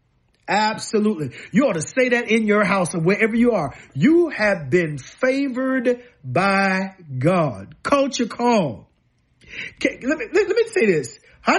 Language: English